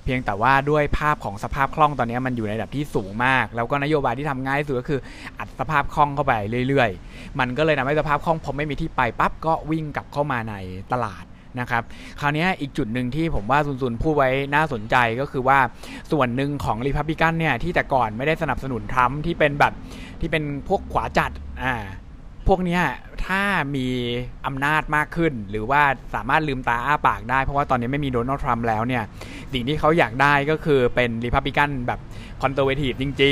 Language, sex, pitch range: Thai, male, 120-155 Hz